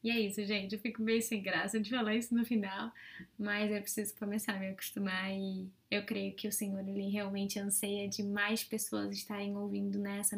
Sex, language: female, Portuguese